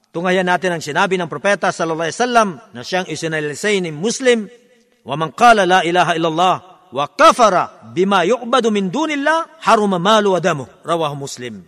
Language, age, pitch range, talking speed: Filipino, 50-69, 175-240 Hz, 150 wpm